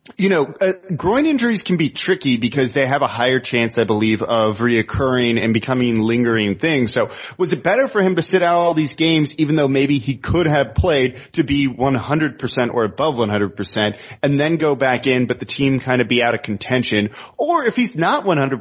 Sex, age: male, 30-49